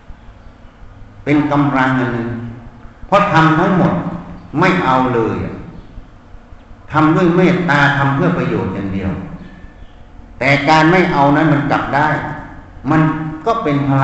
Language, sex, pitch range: Thai, male, 110-165 Hz